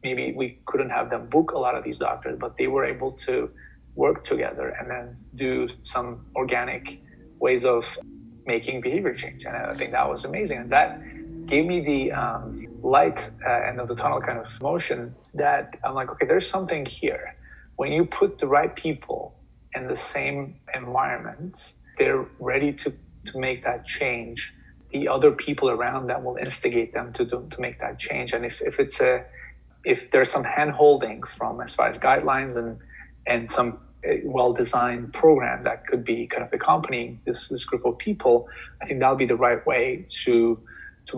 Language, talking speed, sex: English, 185 wpm, male